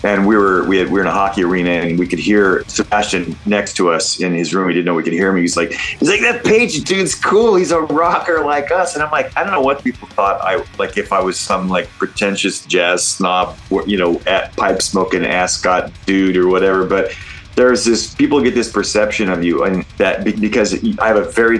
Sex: male